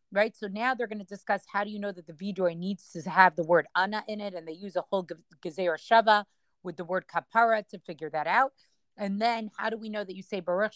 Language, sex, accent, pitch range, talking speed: English, female, American, 185-225 Hz, 260 wpm